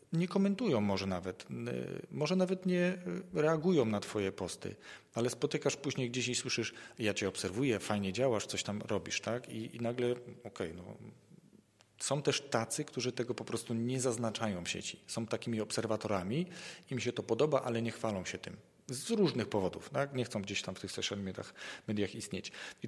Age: 40-59